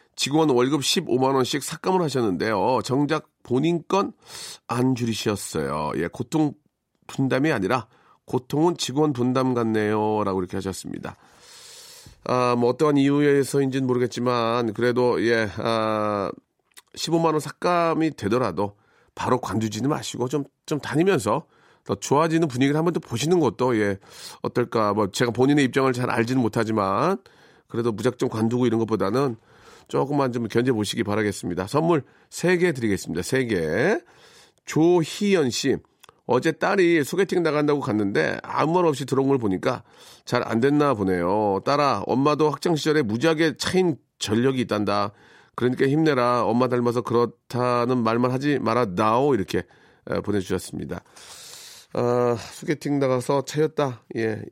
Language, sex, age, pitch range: Korean, male, 40-59, 115-150 Hz